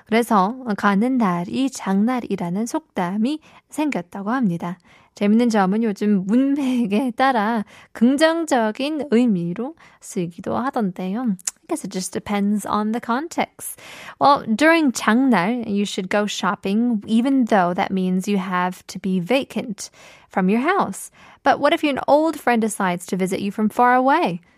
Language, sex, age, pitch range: Korean, female, 20-39, 195-250 Hz